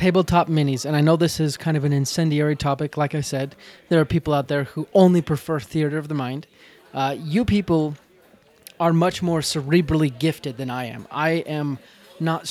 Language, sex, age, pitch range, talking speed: English, male, 20-39, 145-170 Hz, 195 wpm